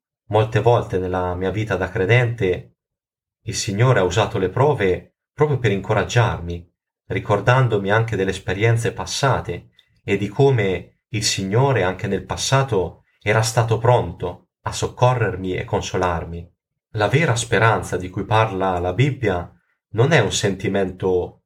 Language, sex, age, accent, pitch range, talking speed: Italian, male, 30-49, native, 95-120 Hz, 135 wpm